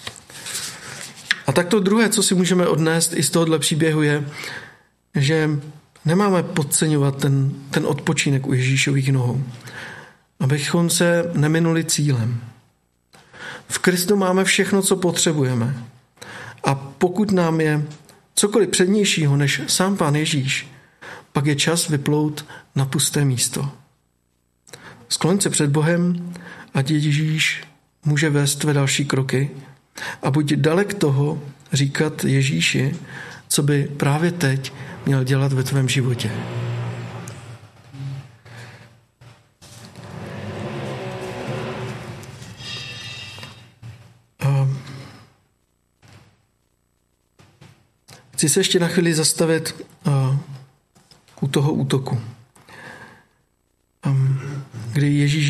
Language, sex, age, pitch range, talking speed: Czech, male, 50-69, 125-160 Hz, 90 wpm